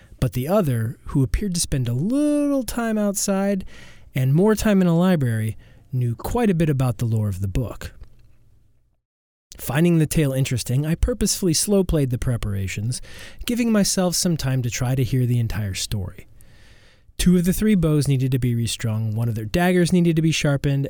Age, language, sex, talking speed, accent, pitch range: 30-49, English, male, 185 wpm, American, 110-160 Hz